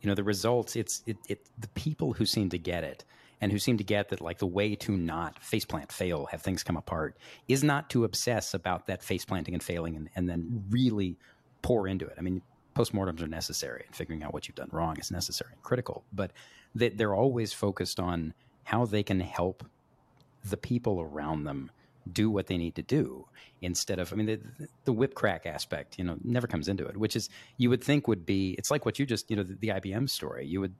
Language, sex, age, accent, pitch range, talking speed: English, male, 40-59, American, 90-115 Hz, 230 wpm